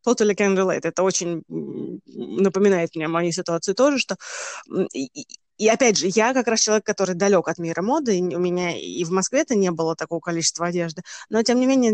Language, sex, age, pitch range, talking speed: Russian, female, 20-39, 175-220 Hz, 195 wpm